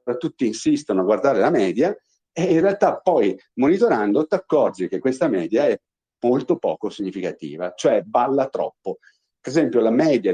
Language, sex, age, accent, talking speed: Italian, male, 50-69, native, 155 wpm